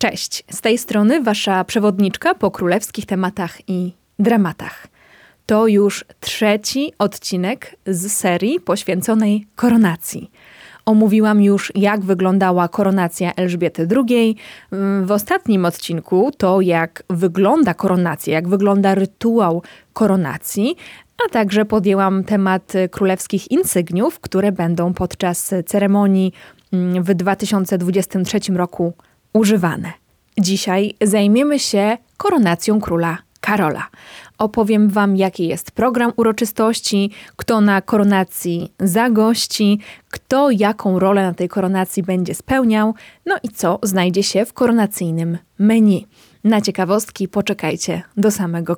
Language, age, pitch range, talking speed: Polish, 20-39, 185-215 Hz, 110 wpm